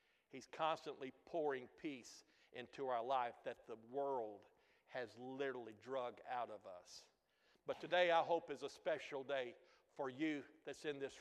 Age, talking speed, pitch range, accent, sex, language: 60-79, 155 wpm, 145-195 Hz, American, male, English